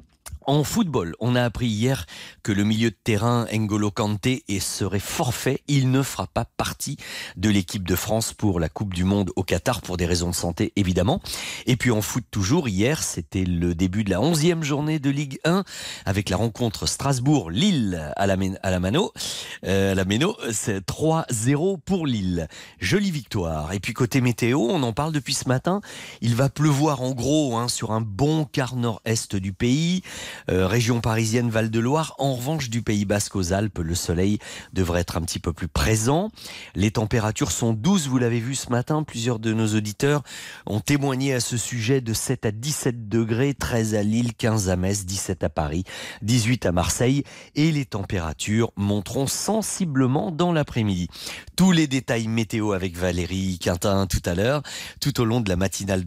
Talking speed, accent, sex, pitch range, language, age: 185 wpm, French, male, 95-135 Hz, French, 40-59